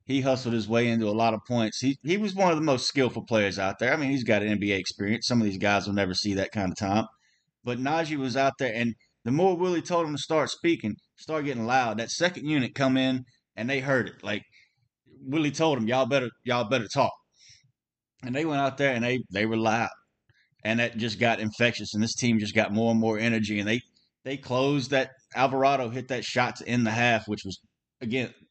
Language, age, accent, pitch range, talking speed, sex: English, 20-39, American, 110-135 Hz, 240 wpm, male